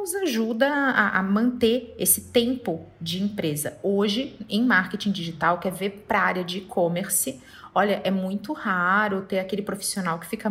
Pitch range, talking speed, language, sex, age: 195-260 Hz, 165 wpm, Portuguese, female, 30-49